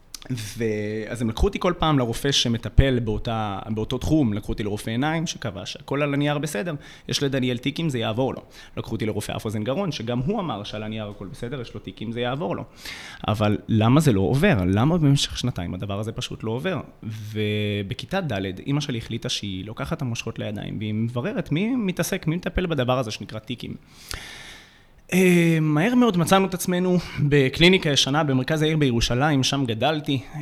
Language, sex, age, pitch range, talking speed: Hebrew, male, 20-39, 110-155 Hz, 175 wpm